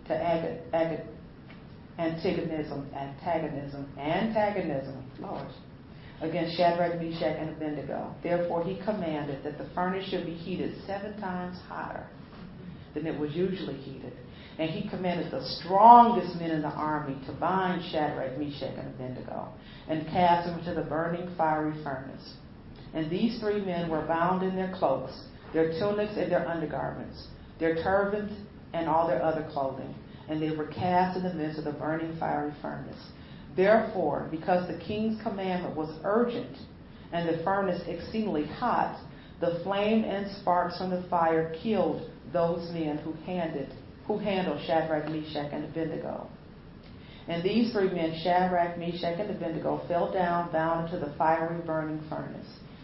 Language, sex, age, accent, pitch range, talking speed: English, female, 40-59, American, 155-180 Hz, 150 wpm